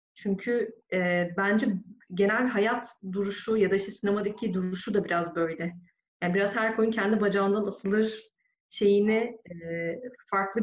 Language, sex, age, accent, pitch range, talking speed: Turkish, female, 30-49, native, 185-220 Hz, 135 wpm